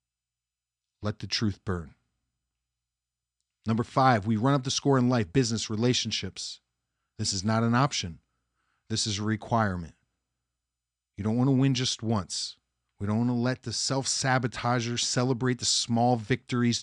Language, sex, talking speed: English, male, 155 wpm